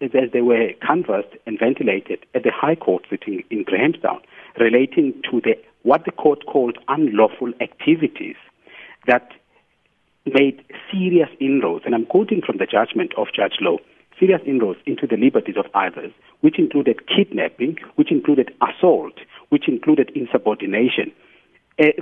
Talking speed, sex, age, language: 140 wpm, male, 60-79, English